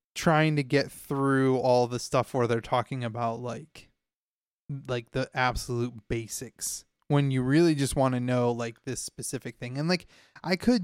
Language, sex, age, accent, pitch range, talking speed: English, male, 20-39, American, 120-135 Hz, 170 wpm